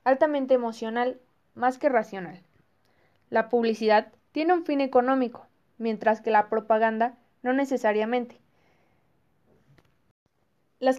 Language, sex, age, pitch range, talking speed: Spanish, female, 20-39, 225-270 Hz, 100 wpm